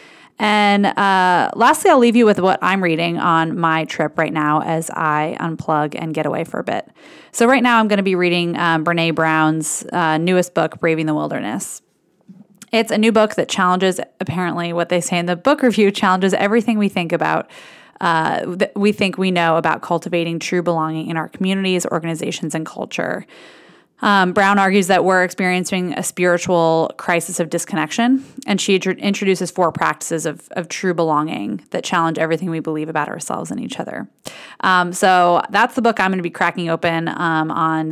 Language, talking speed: English, 190 wpm